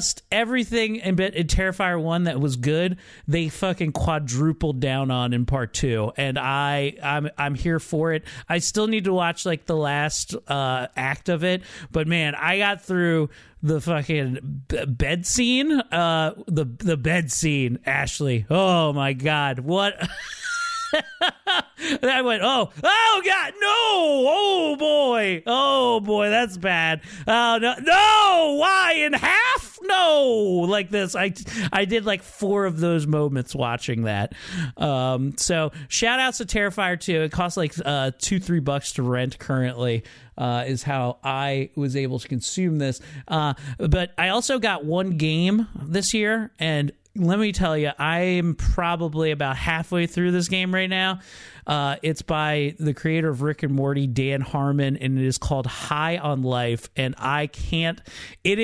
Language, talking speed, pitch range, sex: English, 165 wpm, 140-200 Hz, male